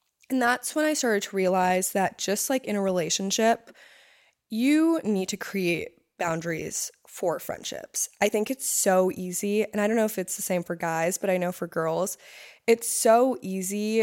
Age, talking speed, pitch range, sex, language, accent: 20-39, 185 wpm, 185-235 Hz, female, English, American